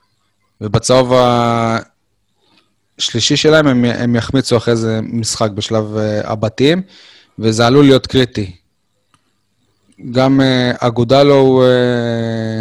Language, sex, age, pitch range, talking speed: Hebrew, male, 20-39, 115-130 Hz, 80 wpm